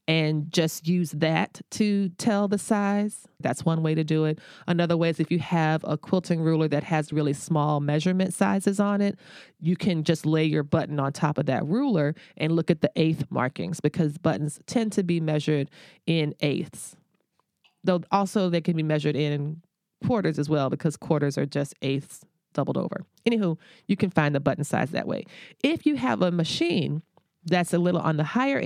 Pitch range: 155-190 Hz